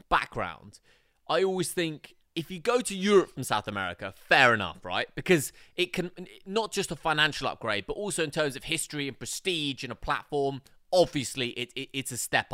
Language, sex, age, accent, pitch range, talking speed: English, male, 20-39, British, 135-195 Hz, 190 wpm